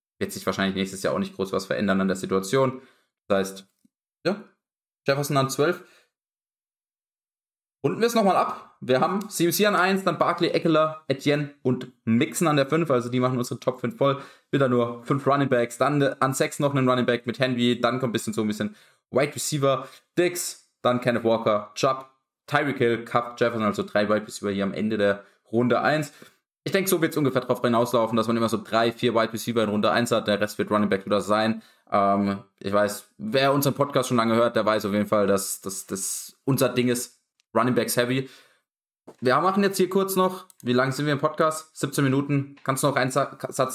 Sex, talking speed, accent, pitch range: male, 215 wpm, German, 115-145 Hz